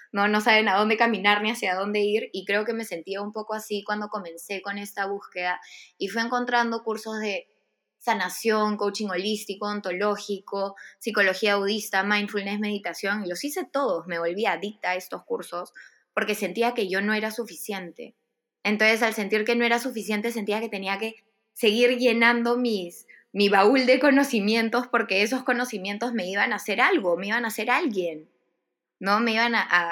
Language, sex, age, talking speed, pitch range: Spanish, female, 20-39, 175 wpm, 190-235 Hz